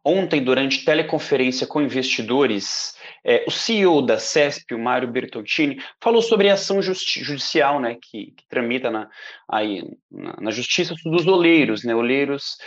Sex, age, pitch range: male, 20-39, 150-185 Hz